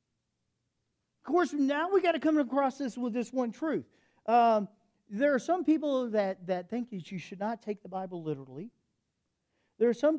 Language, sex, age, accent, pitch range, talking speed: English, male, 50-69, American, 190-305 Hz, 190 wpm